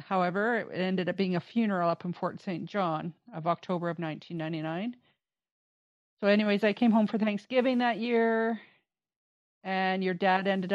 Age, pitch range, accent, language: 40-59, 185-210 Hz, American, English